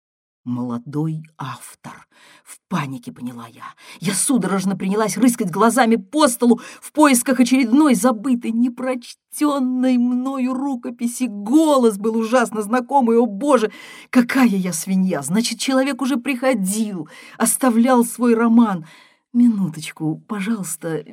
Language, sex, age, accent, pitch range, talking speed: Russian, female, 40-59, native, 185-265 Hz, 110 wpm